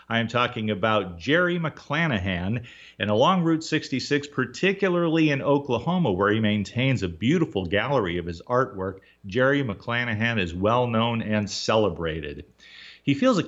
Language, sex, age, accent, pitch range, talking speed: English, male, 40-59, American, 100-140 Hz, 145 wpm